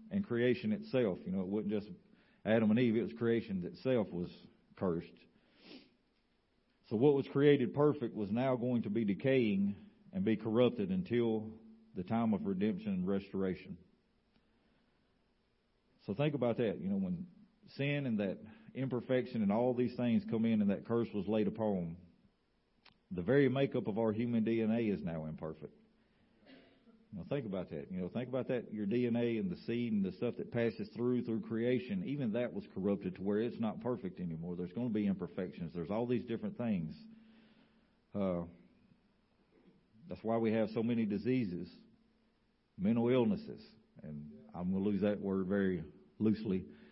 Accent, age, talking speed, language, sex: American, 50-69, 165 wpm, English, male